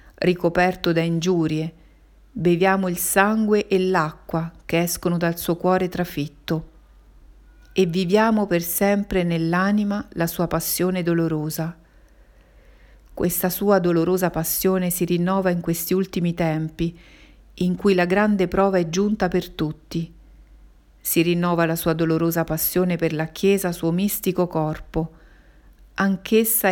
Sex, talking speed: female, 125 wpm